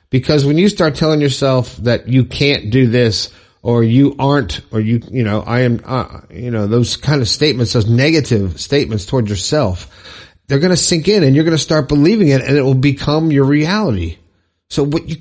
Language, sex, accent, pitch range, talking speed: English, male, American, 115-155 Hz, 210 wpm